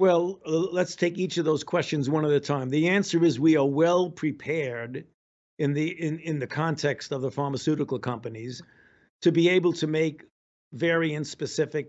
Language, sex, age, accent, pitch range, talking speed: English, male, 50-69, American, 145-170 Hz, 175 wpm